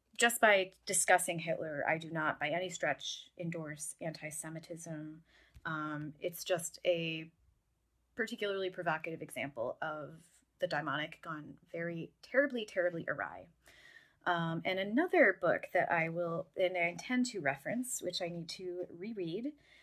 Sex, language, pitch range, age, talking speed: female, English, 160-195 Hz, 20-39, 130 wpm